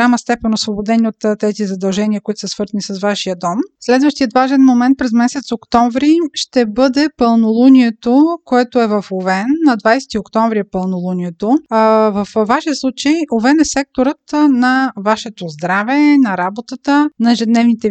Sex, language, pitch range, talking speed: female, Bulgarian, 215-265 Hz, 145 wpm